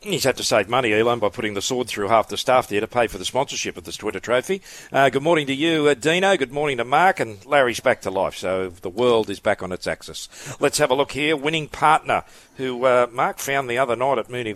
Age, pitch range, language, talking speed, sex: 50-69, 105-145 Hz, English, 260 wpm, male